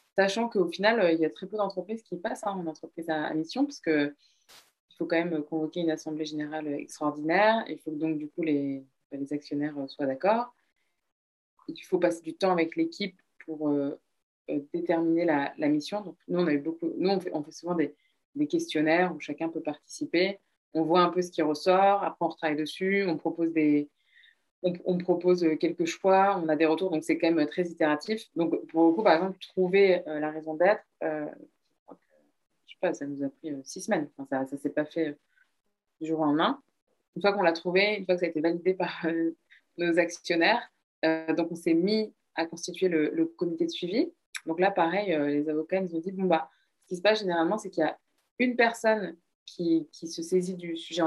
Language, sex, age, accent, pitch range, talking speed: French, female, 20-39, French, 155-185 Hz, 220 wpm